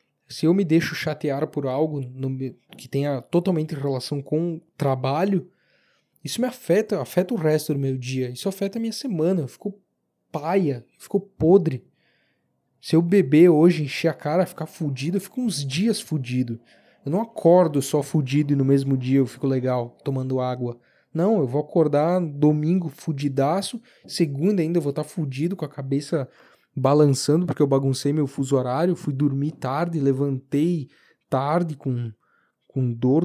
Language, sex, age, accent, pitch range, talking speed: Portuguese, male, 20-39, Brazilian, 135-170 Hz, 170 wpm